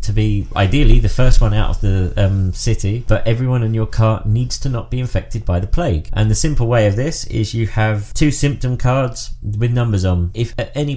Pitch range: 105-125 Hz